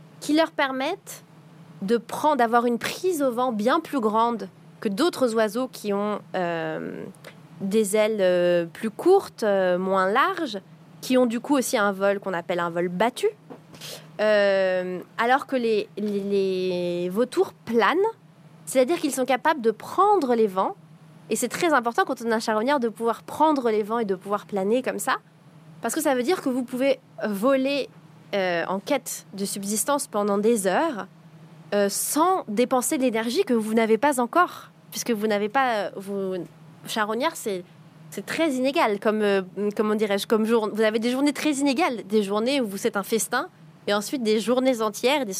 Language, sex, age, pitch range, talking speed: French, female, 20-39, 190-255 Hz, 180 wpm